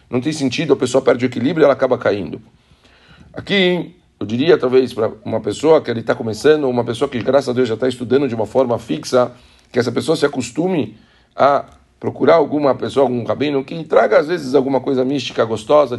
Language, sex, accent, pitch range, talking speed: Portuguese, male, Brazilian, 120-145 Hz, 205 wpm